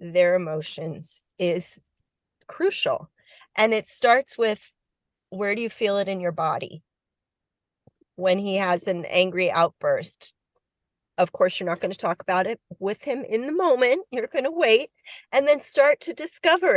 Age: 40-59